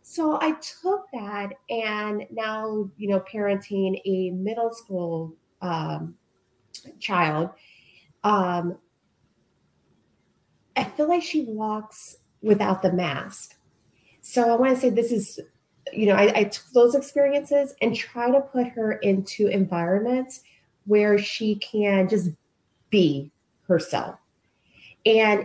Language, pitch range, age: English, 160-215 Hz, 30-49